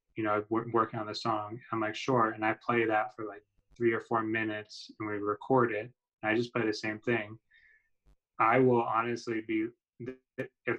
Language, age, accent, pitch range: English, 20-39, American, 110-125 Hz